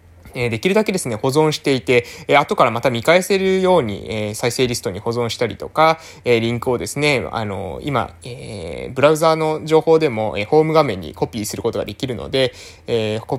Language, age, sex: Japanese, 20-39, male